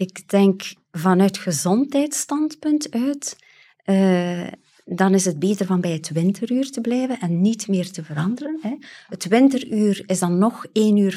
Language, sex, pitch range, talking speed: Dutch, female, 175-220 Hz, 150 wpm